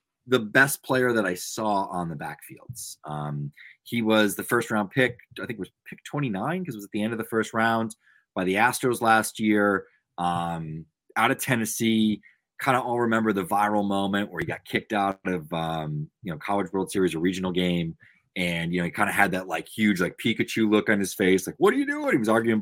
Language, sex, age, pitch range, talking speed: English, male, 30-49, 90-110 Hz, 230 wpm